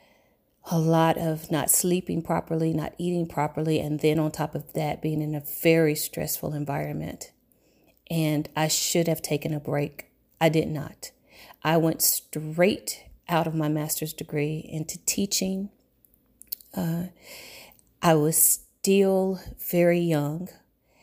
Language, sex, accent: English, female, American